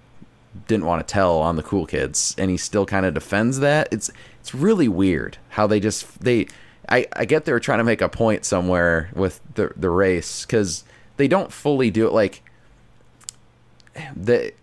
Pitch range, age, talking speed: 90-115 Hz, 30-49, 185 wpm